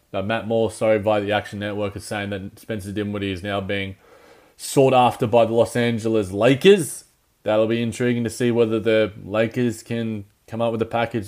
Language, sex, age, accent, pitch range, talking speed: English, male, 20-39, Australian, 105-125 Hz, 195 wpm